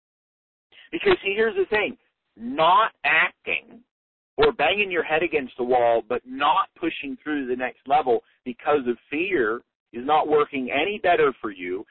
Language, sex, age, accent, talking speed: English, male, 50-69, American, 160 wpm